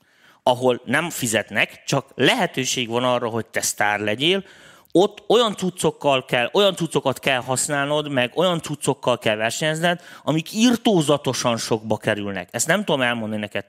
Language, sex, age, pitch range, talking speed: Hungarian, male, 30-49, 120-155 Hz, 140 wpm